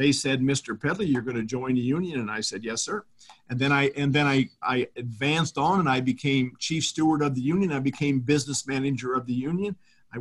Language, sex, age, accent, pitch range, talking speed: English, male, 50-69, American, 130-155 Hz, 235 wpm